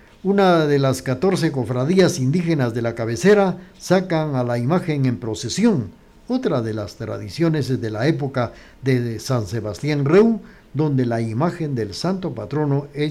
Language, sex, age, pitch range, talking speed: Spanish, male, 60-79, 115-175 Hz, 155 wpm